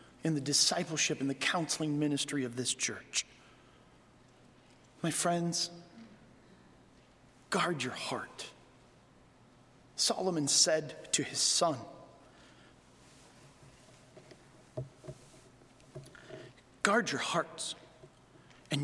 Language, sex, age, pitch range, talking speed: English, male, 40-59, 150-230 Hz, 75 wpm